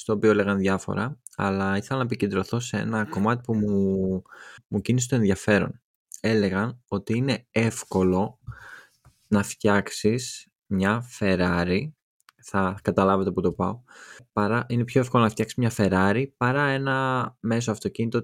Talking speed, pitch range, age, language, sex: 140 wpm, 100-120 Hz, 20-39, Greek, male